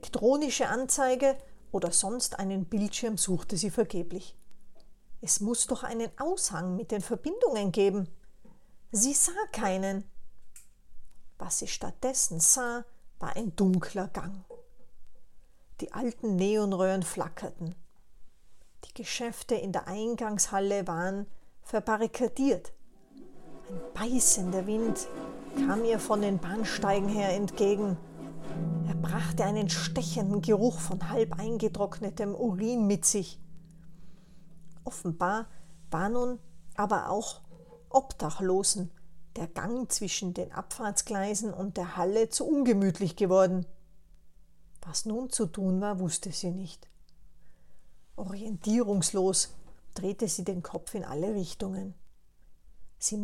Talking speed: 105 wpm